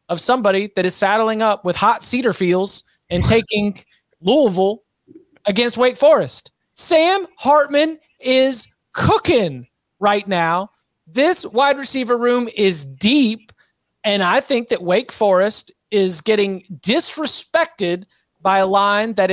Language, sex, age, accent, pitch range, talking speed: English, male, 30-49, American, 180-225 Hz, 125 wpm